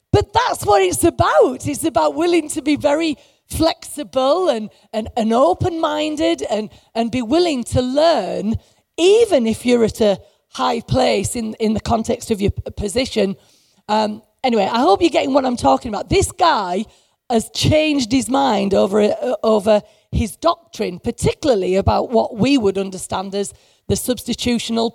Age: 40-59